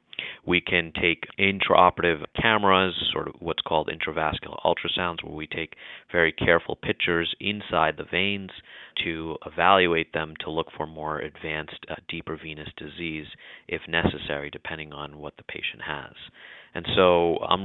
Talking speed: 145 wpm